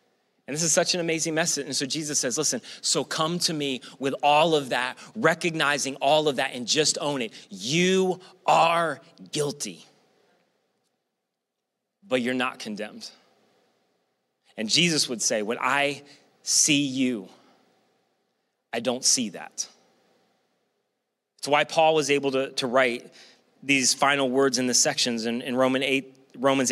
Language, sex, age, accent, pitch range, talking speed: English, male, 30-49, American, 145-190 Hz, 150 wpm